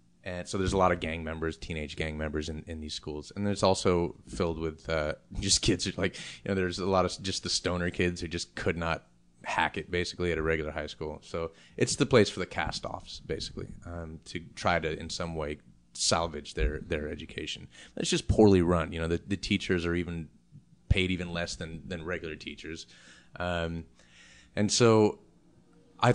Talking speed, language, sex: 205 wpm, English, male